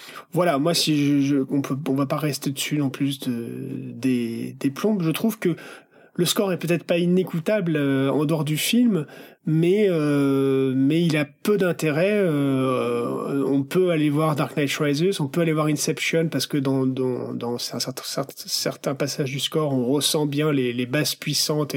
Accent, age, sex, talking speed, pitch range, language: French, 40-59, male, 185 wpm, 140-175 Hz, French